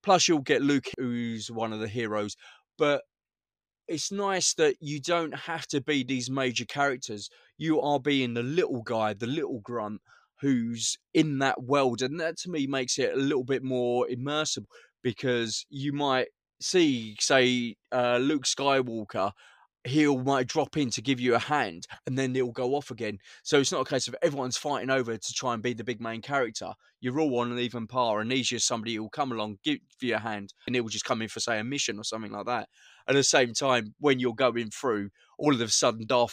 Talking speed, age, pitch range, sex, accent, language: 210 wpm, 20-39, 115-140 Hz, male, British, English